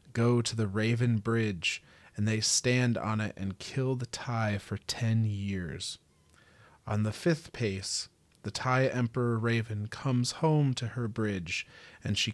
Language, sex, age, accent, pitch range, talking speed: English, male, 30-49, American, 100-120 Hz, 155 wpm